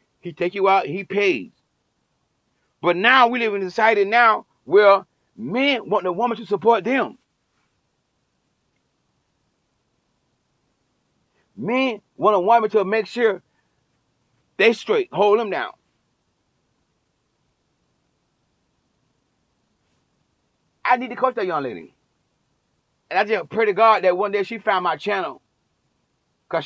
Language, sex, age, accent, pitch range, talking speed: English, male, 30-49, American, 180-225 Hz, 125 wpm